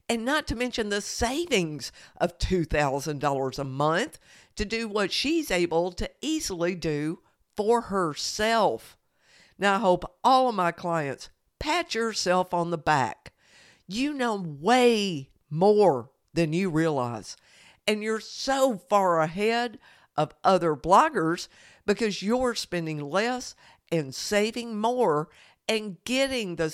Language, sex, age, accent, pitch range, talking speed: English, female, 50-69, American, 165-230 Hz, 130 wpm